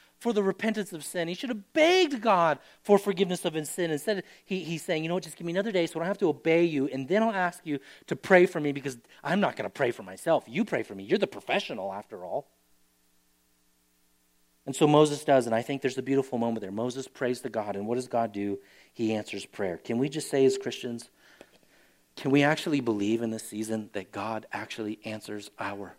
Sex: male